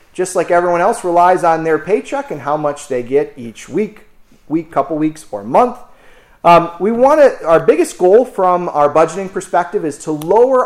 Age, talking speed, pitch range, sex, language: 30-49, 185 wpm, 135-175 Hz, male, English